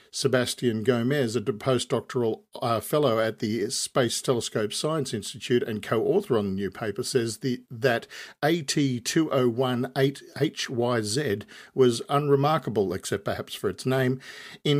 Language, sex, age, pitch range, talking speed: English, male, 50-69, 110-135 Hz, 115 wpm